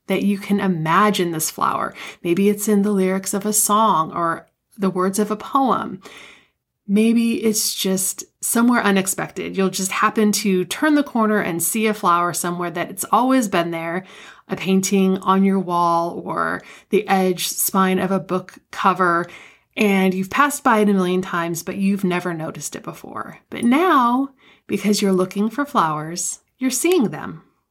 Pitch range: 185-215 Hz